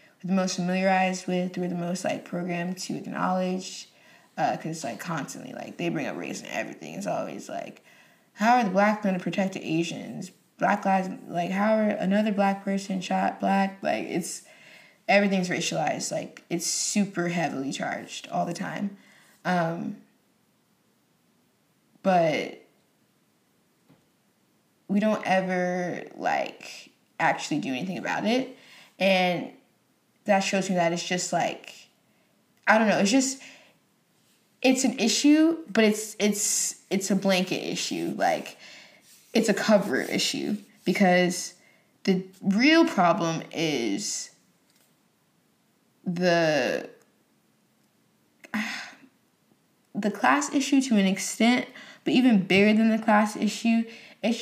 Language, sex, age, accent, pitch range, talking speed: English, female, 20-39, American, 185-230 Hz, 125 wpm